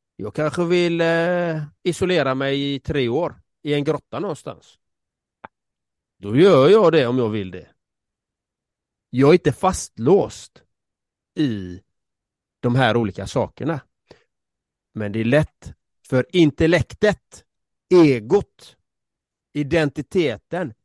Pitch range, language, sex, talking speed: 100-135 Hz, Swedish, male, 105 wpm